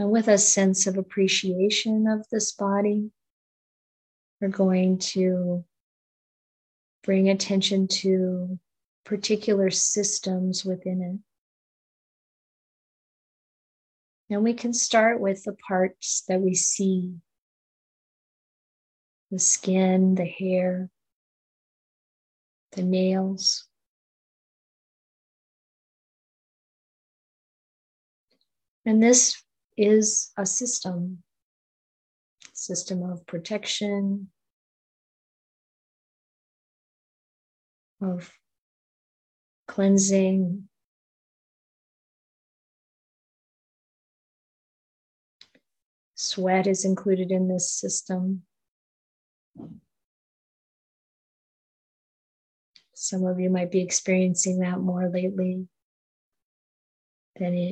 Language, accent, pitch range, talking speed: English, American, 185-200 Hz, 65 wpm